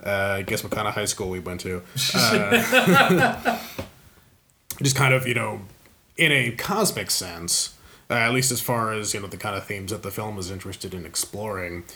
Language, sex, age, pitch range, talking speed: English, male, 30-49, 95-120 Hz, 200 wpm